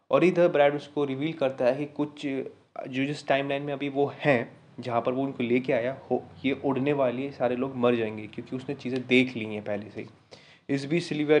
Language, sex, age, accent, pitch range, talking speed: Hindi, male, 20-39, native, 120-145 Hz, 220 wpm